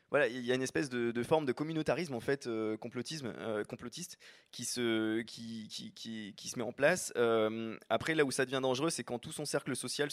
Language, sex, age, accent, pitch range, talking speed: French, male, 20-39, French, 115-135 Hz, 180 wpm